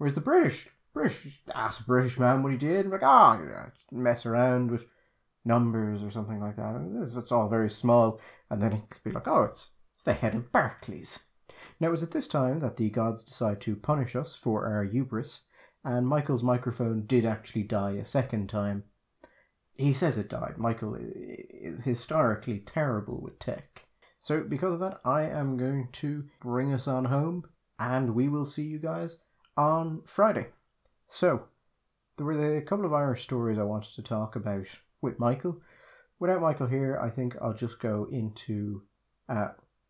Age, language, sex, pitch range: 30-49, English, male, 110-145 Hz